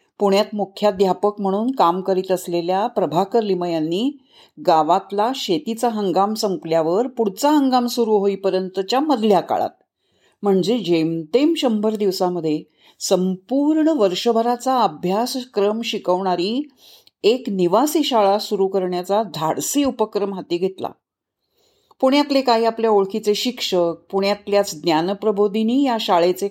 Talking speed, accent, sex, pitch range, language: 95 wpm, native, female, 190-255 Hz, Marathi